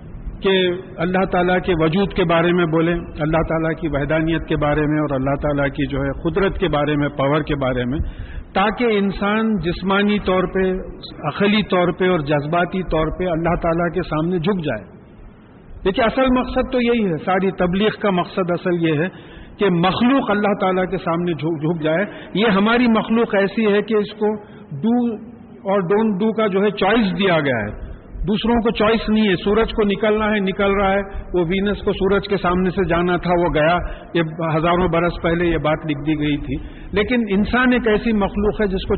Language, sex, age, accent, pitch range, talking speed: English, male, 50-69, Indian, 170-215 Hz, 170 wpm